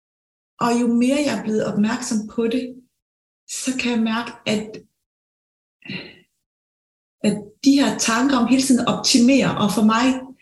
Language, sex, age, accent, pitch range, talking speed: Danish, female, 30-49, native, 205-255 Hz, 145 wpm